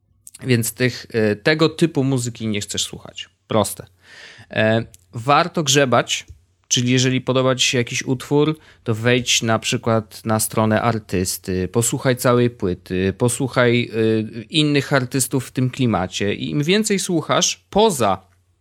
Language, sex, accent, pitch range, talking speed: Polish, male, native, 105-140 Hz, 125 wpm